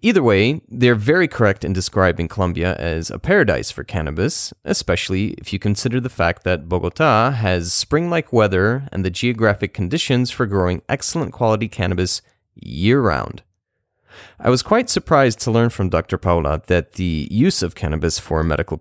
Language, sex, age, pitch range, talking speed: English, male, 30-49, 90-115 Hz, 160 wpm